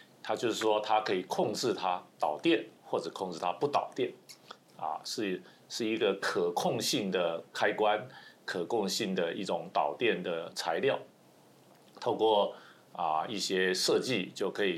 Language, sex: Chinese, male